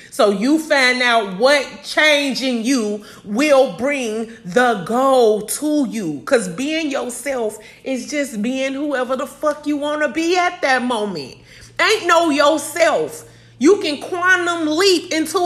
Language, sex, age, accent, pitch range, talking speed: English, female, 30-49, American, 230-300 Hz, 150 wpm